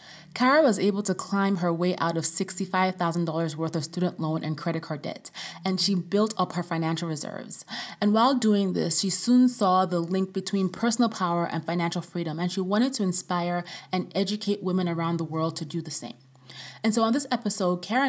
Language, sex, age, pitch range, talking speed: English, female, 20-39, 165-205 Hz, 200 wpm